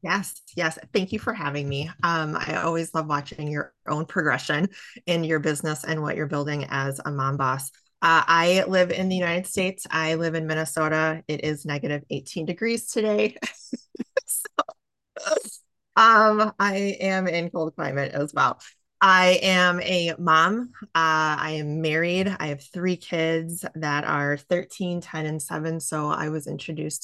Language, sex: English, female